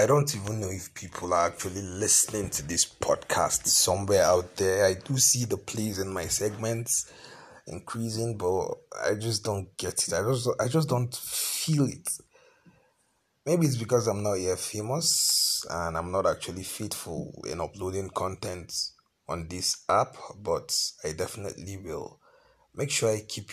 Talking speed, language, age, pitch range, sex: 160 wpm, English, 30-49, 95-120 Hz, male